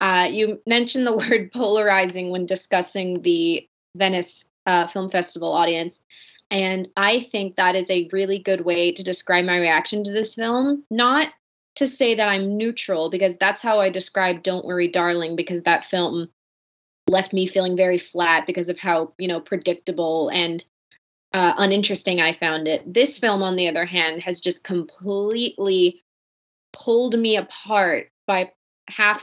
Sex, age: female, 20-39